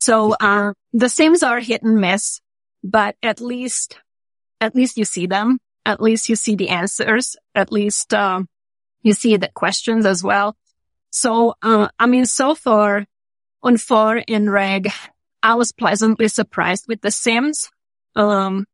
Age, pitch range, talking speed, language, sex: 30-49, 190-225 Hz, 155 wpm, English, female